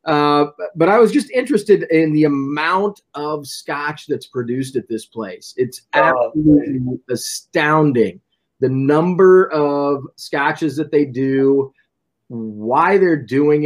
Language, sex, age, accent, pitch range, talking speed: English, male, 30-49, American, 125-155 Hz, 125 wpm